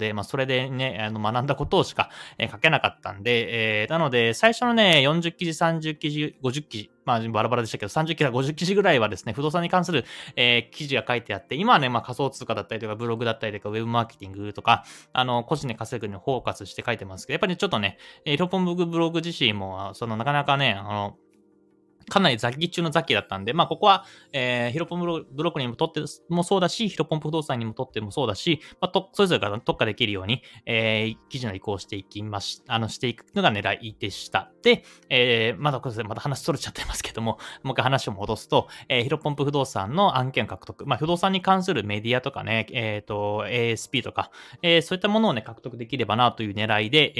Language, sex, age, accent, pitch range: Japanese, male, 20-39, native, 110-160 Hz